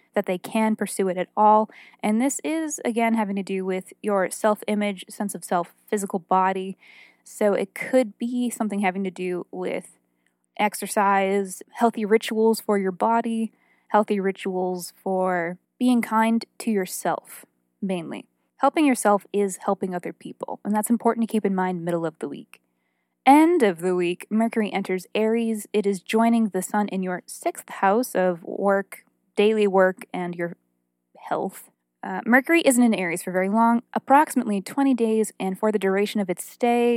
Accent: American